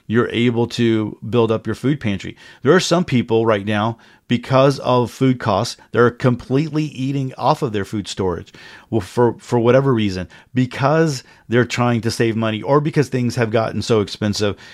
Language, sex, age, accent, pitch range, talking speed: English, male, 40-59, American, 110-130 Hz, 175 wpm